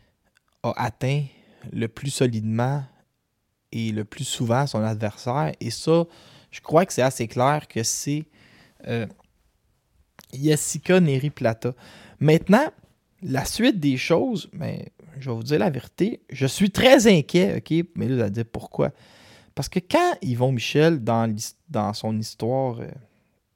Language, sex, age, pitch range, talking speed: French, male, 20-39, 115-160 Hz, 140 wpm